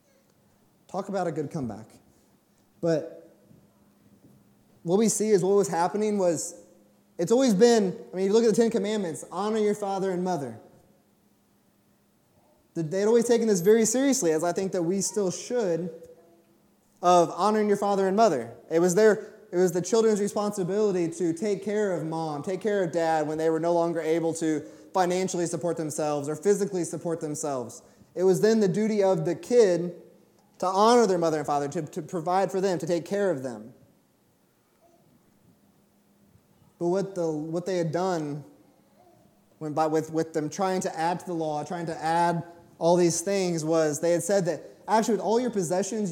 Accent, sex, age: American, male, 20-39